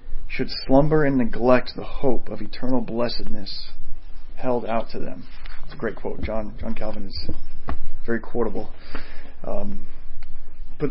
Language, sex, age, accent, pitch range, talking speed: English, male, 30-49, American, 115-145 Hz, 140 wpm